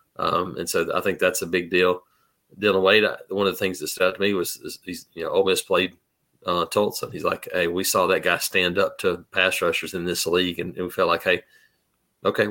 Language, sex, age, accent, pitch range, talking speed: English, male, 40-59, American, 95-110 Hz, 240 wpm